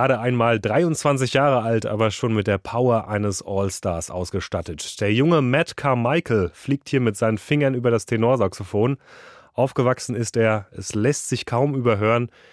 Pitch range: 105-130 Hz